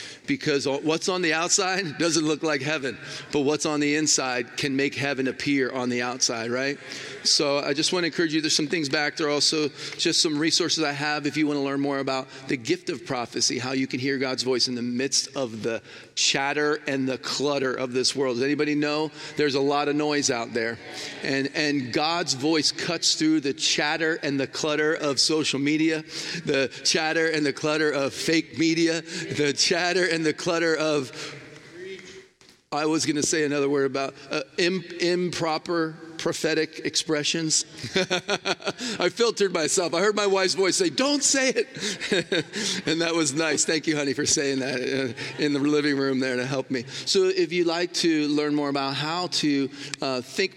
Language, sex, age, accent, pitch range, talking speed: English, male, 40-59, American, 140-165 Hz, 190 wpm